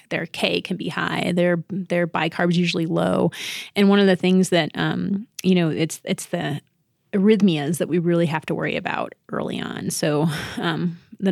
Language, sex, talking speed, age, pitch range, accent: English, female, 190 wpm, 30-49, 160-185 Hz, American